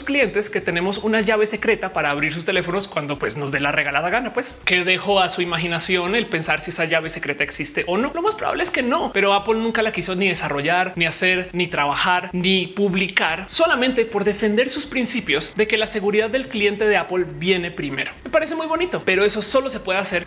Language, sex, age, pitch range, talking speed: Spanish, male, 30-49, 165-215 Hz, 225 wpm